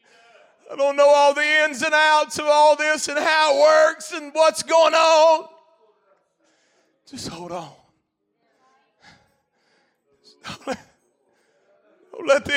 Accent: American